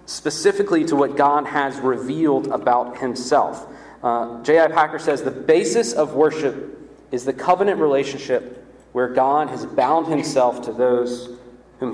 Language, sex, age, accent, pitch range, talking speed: English, male, 30-49, American, 130-160 Hz, 140 wpm